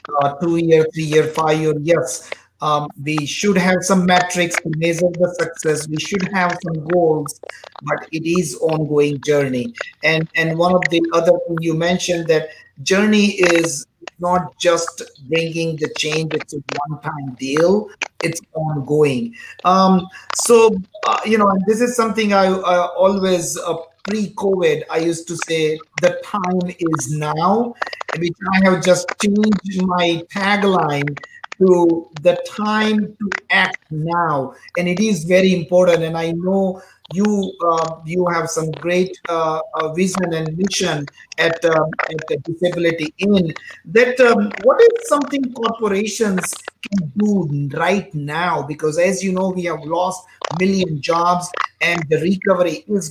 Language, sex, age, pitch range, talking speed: English, male, 50-69, 160-190 Hz, 150 wpm